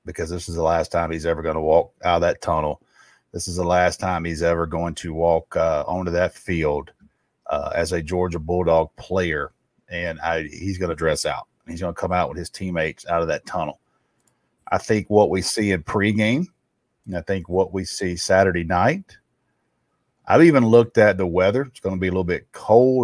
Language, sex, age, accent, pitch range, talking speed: English, male, 40-59, American, 90-110 Hz, 215 wpm